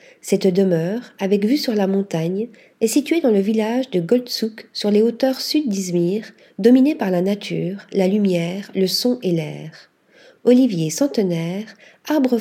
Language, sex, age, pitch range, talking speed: French, female, 40-59, 185-245 Hz, 155 wpm